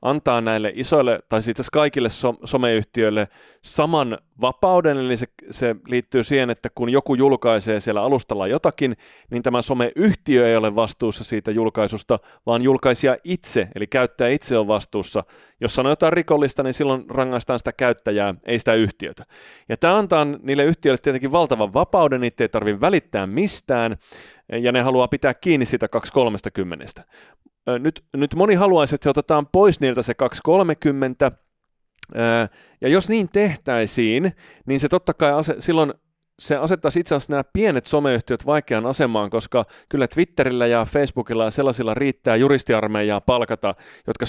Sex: male